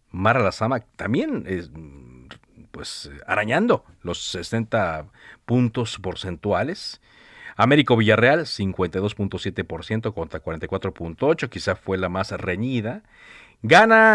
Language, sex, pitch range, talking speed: Spanish, male, 95-125 Hz, 90 wpm